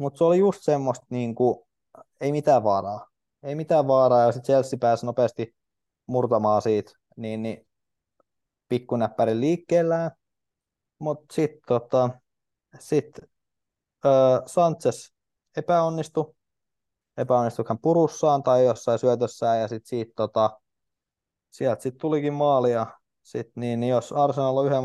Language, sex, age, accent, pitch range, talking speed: Finnish, male, 20-39, native, 115-145 Hz, 120 wpm